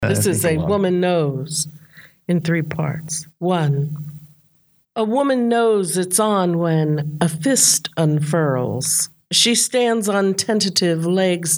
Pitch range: 155-200 Hz